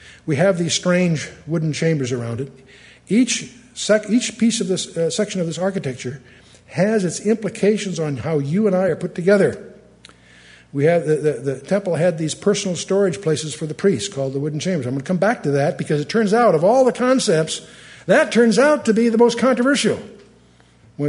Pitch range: 140-190 Hz